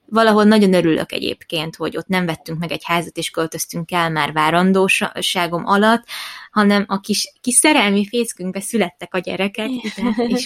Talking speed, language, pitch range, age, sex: 155 wpm, Hungarian, 180-225 Hz, 20-39, female